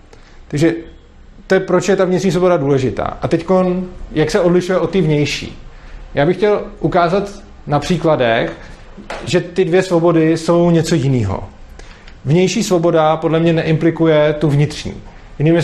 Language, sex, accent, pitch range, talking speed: Czech, male, native, 140-175 Hz, 145 wpm